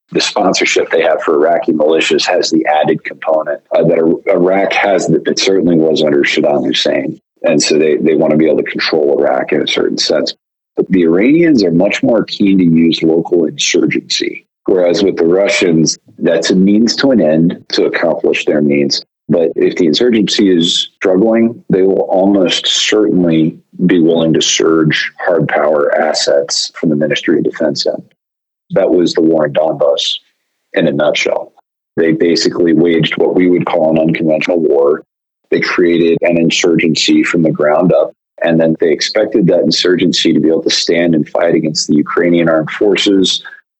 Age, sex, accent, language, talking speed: 40-59, male, American, English, 180 wpm